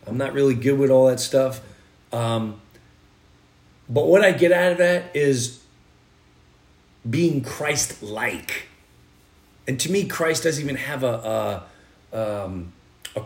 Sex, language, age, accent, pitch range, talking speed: male, English, 40-59, American, 100-145 Hz, 135 wpm